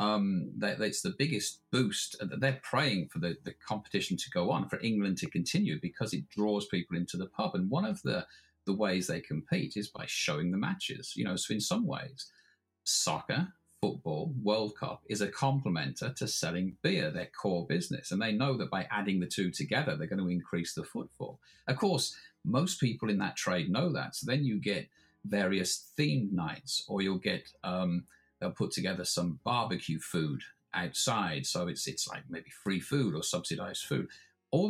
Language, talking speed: English, 190 wpm